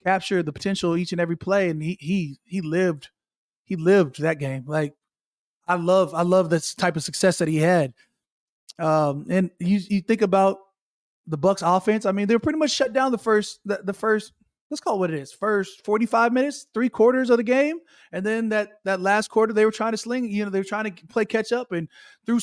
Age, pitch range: 20-39, 185-230 Hz